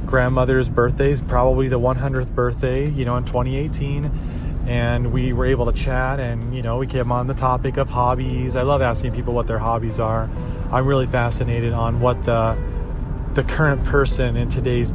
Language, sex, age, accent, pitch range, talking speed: English, male, 30-49, American, 115-130 Hz, 185 wpm